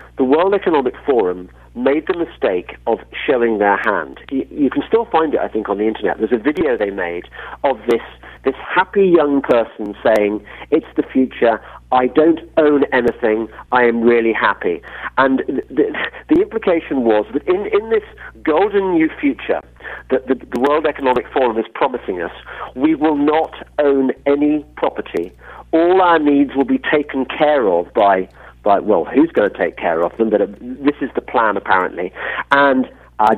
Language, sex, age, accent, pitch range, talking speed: English, male, 50-69, British, 130-210 Hz, 180 wpm